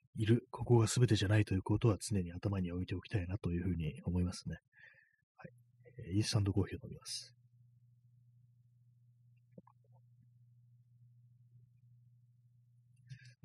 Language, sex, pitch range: Japanese, male, 95-120 Hz